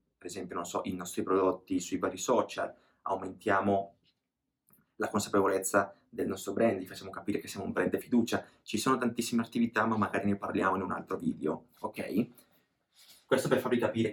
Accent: native